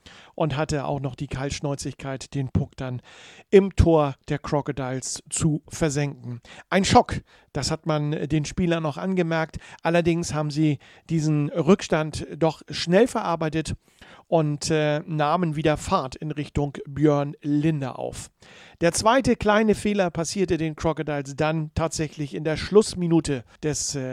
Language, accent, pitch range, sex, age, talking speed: German, German, 145-165 Hz, male, 50-69, 135 wpm